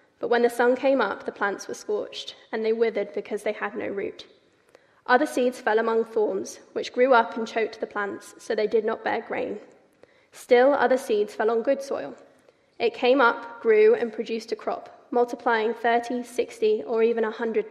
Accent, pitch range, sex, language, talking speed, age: British, 225-275 Hz, female, English, 195 wpm, 10-29